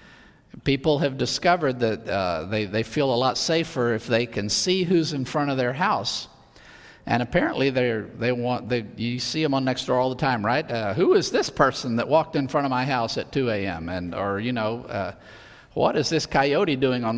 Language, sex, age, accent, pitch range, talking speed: English, male, 50-69, American, 115-155 Hz, 215 wpm